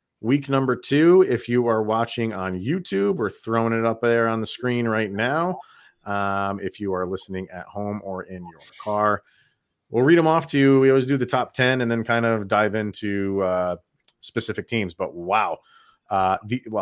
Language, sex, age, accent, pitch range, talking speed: English, male, 30-49, American, 105-135 Hz, 195 wpm